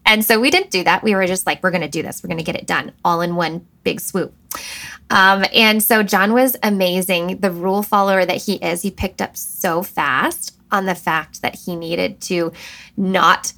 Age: 20-39